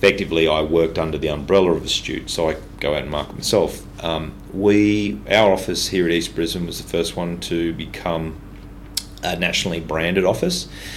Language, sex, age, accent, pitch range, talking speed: English, male, 30-49, Australian, 80-95 Hz, 180 wpm